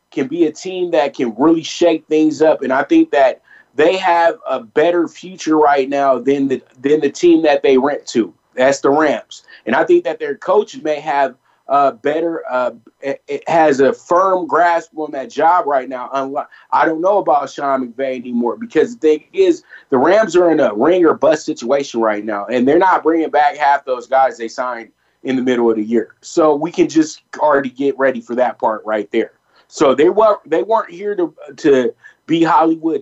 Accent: American